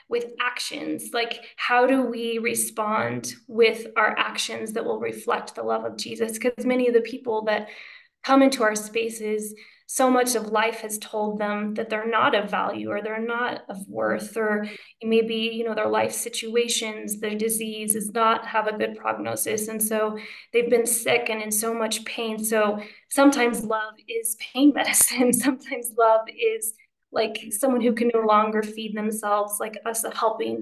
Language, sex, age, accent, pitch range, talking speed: English, female, 20-39, American, 215-235 Hz, 175 wpm